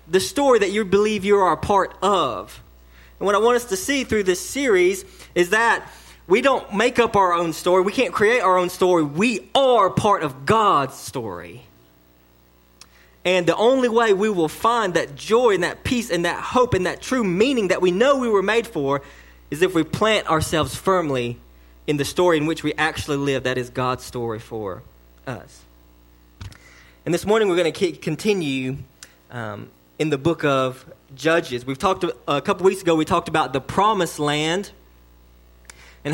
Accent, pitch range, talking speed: American, 125-190 Hz, 190 wpm